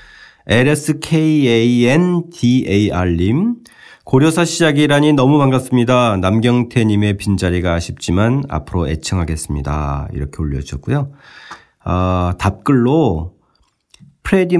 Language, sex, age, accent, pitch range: Korean, male, 40-59, native, 90-130 Hz